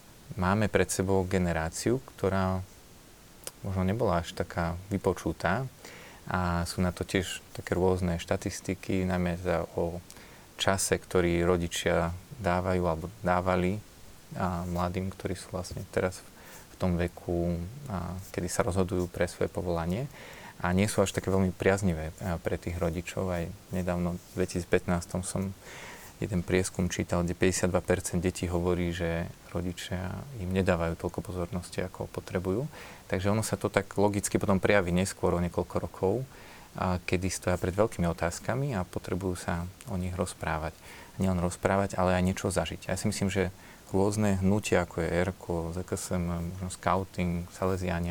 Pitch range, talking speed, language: 90-100 Hz, 145 wpm, Slovak